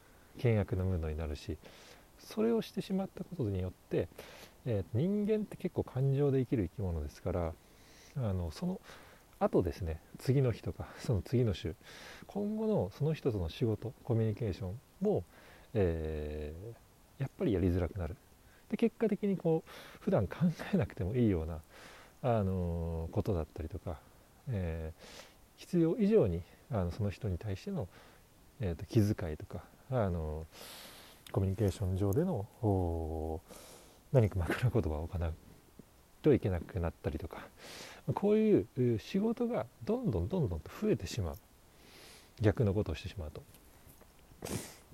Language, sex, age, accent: Japanese, male, 40-59, native